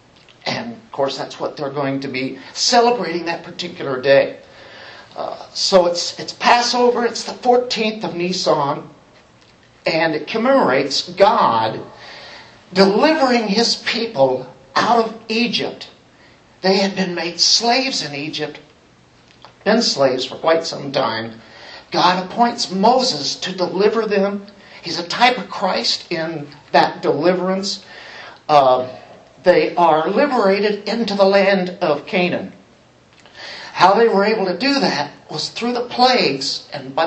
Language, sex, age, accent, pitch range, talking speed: English, male, 50-69, American, 165-230 Hz, 135 wpm